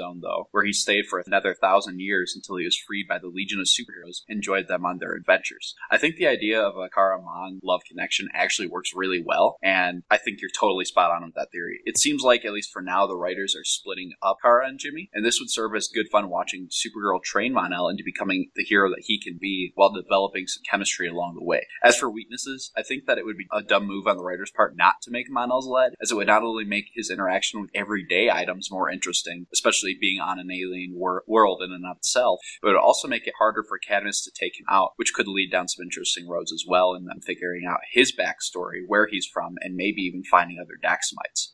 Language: English